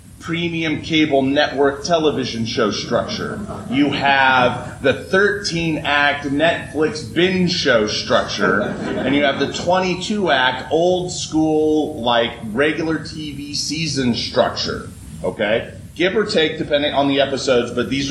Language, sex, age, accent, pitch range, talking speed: English, male, 30-49, American, 130-175 Hz, 115 wpm